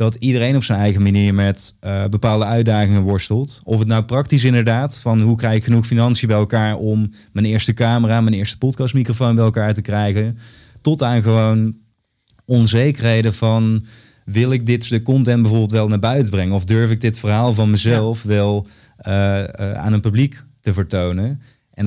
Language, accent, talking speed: Dutch, Dutch, 180 wpm